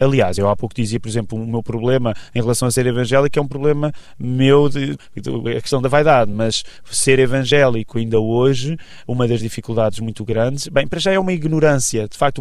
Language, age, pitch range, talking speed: Portuguese, 20-39, 115-140 Hz, 200 wpm